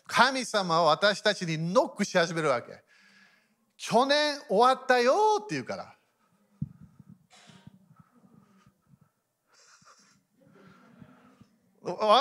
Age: 40-59